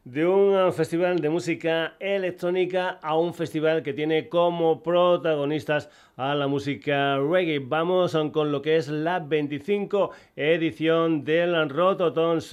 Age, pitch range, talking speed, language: 40-59, 145-165 Hz, 130 wpm, Spanish